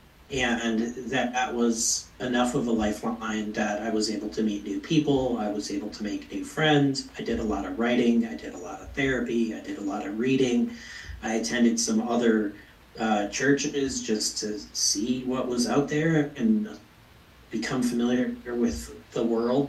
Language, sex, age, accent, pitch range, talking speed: English, male, 40-59, American, 105-125 Hz, 185 wpm